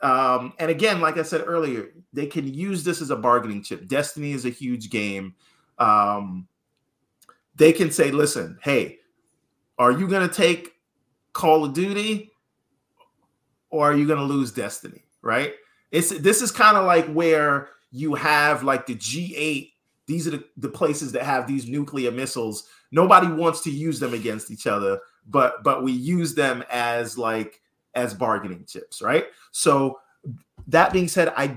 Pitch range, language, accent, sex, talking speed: 120-155 Hz, English, American, male, 165 wpm